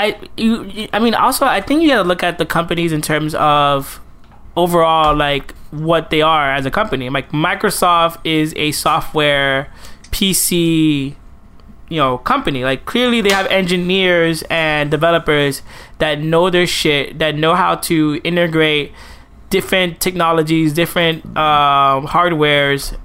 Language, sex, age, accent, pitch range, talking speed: English, male, 20-39, American, 150-180 Hz, 140 wpm